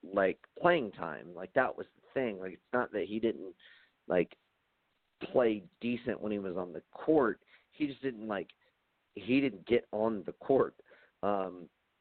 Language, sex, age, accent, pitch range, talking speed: English, male, 40-59, American, 90-120 Hz, 170 wpm